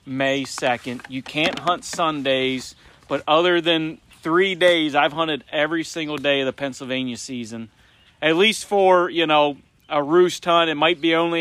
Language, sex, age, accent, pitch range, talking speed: English, male, 30-49, American, 125-160 Hz, 170 wpm